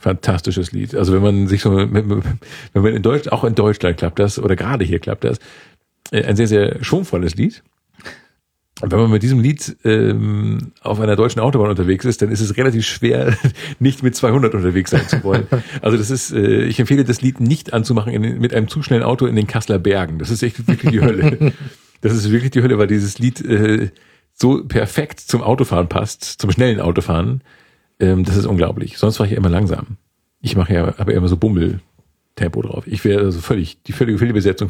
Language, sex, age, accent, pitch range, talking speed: German, male, 50-69, German, 100-120 Hz, 200 wpm